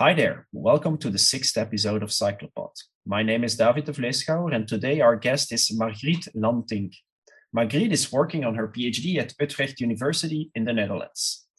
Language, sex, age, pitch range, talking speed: English, male, 30-49, 110-145 Hz, 170 wpm